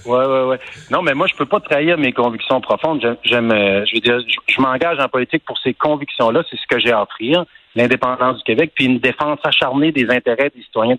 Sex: male